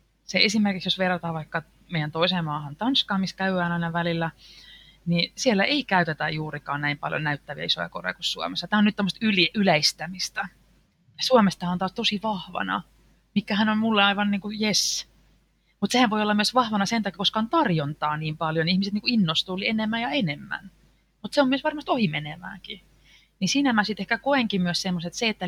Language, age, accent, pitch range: Finnish, 30-49, native, 165-210 Hz